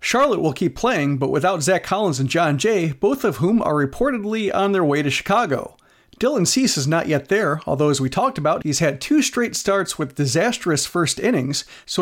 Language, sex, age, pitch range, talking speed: English, male, 40-59, 150-200 Hz, 210 wpm